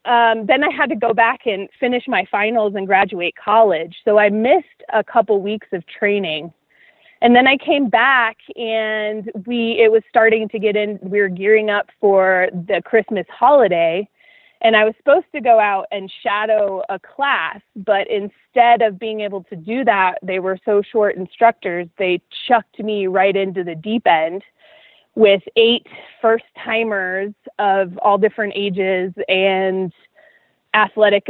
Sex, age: female, 30-49